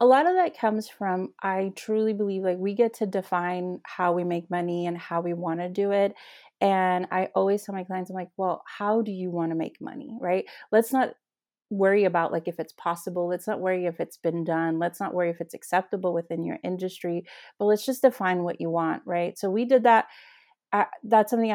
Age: 30-49